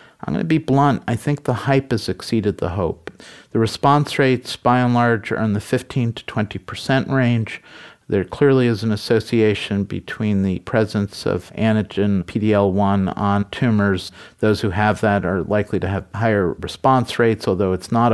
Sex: male